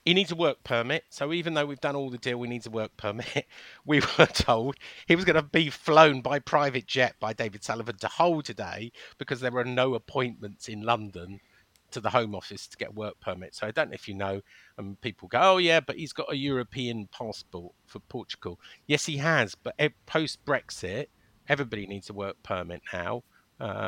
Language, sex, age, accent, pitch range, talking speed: English, male, 50-69, British, 105-140 Hz, 210 wpm